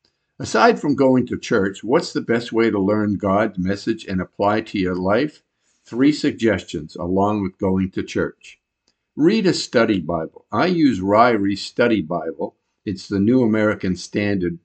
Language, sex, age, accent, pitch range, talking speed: English, male, 50-69, American, 95-120 Hz, 160 wpm